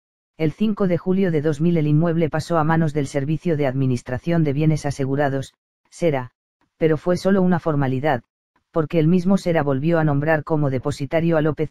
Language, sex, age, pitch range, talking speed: Spanish, female, 40-59, 145-170 Hz, 180 wpm